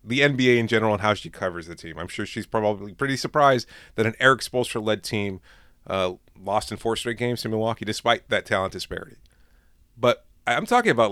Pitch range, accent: 105-145 Hz, American